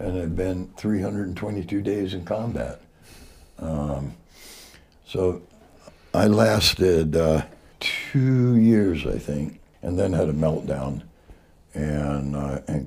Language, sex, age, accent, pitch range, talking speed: English, male, 60-79, American, 75-85 Hz, 110 wpm